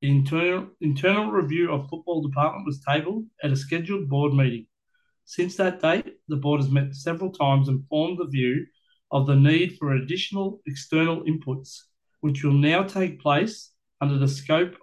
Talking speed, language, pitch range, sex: 170 wpm, English, 140-170 Hz, male